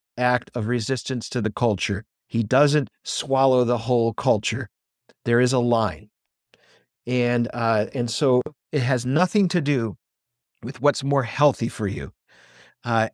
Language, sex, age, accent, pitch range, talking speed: English, male, 50-69, American, 120-150 Hz, 145 wpm